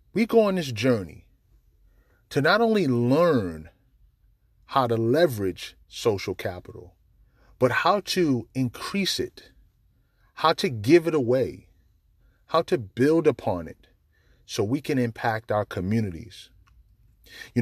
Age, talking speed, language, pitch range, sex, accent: 30-49, 125 wpm, English, 105-160 Hz, male, American